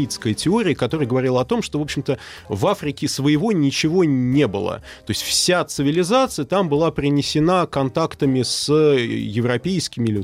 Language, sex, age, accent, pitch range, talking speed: Russian, male, 30-49, native, 105-145 Hz, 145 wpm